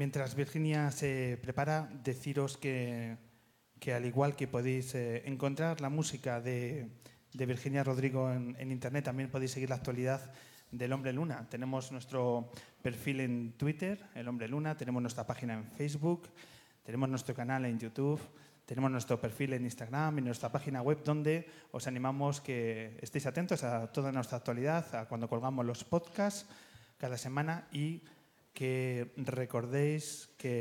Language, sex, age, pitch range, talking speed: Spanish, male, 30-49, 125-145 Hz, 150 wpm